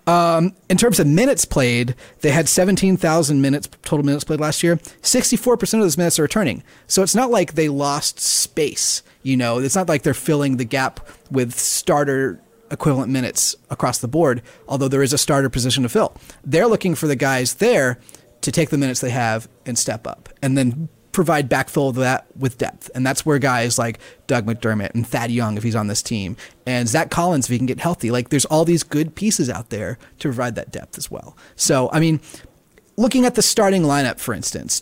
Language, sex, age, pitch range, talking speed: English, male, 30-49, 125-160 Hz, 215 wpm